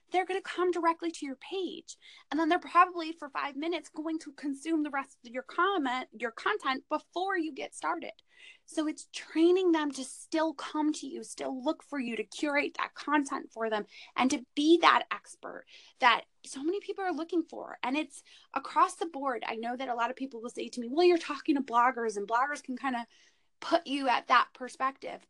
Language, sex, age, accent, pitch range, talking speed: English, female, 20-39, American, 250-335 Hz, 215 wpm